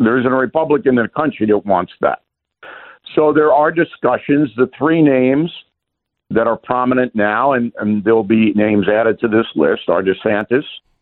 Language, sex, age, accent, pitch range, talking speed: English, male, 60-79, American, 105-145 Hz, 175 wpm